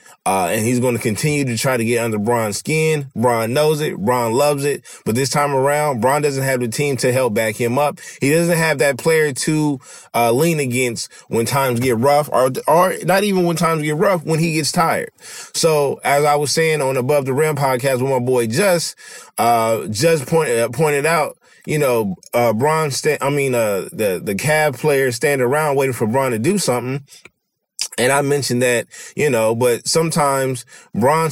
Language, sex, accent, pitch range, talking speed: English, male, American, 120-155 Hz, 205 wpm